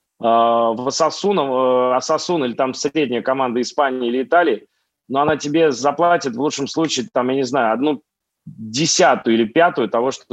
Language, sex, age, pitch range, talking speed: Russian, male, 30-49, 125-155 Hz, 155 wpm